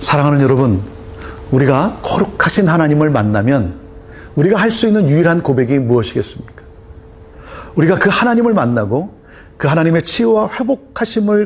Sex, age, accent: male, 40-59, native